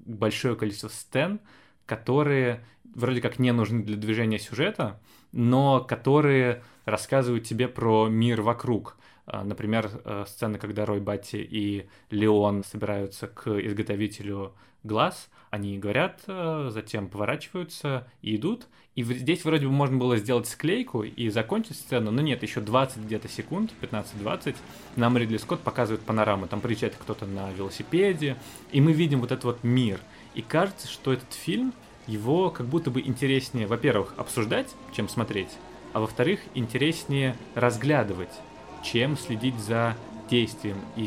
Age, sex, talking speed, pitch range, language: 20-39, male, 135 wpm, 110-130 Hz, Russian